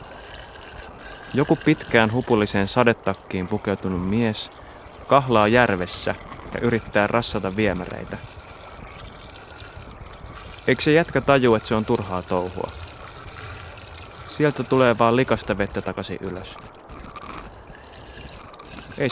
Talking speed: 90 wpm